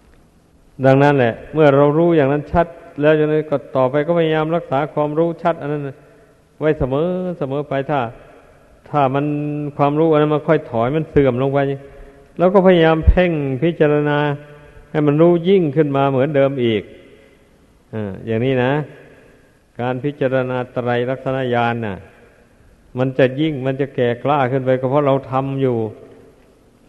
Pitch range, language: 120-140 Hz, Thai